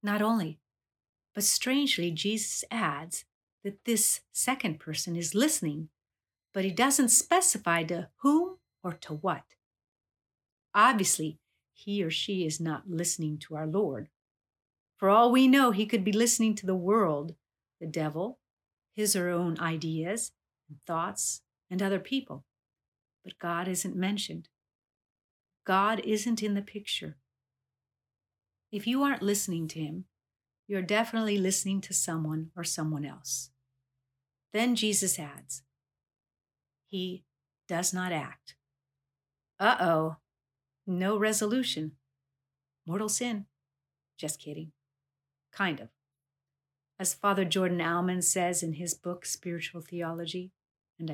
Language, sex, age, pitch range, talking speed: English, female, 50-69, 145-205 Hz, 120 wpm